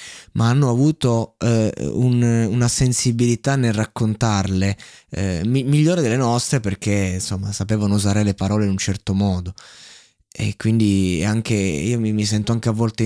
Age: 20-39